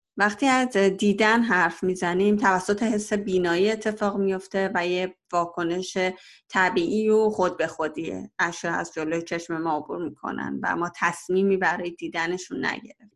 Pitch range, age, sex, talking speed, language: 180-220 Hz, 30-49, female, 145 wpm, Persian